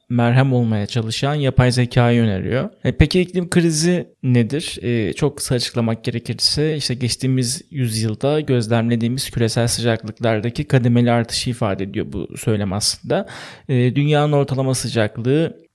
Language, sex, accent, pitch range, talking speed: Turkish, male, native, 120-140 Hz, 120 wpm